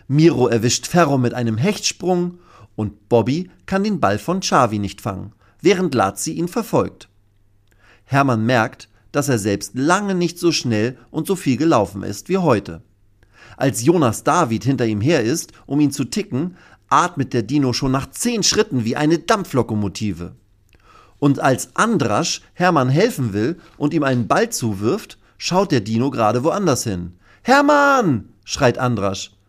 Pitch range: 105-150 Hz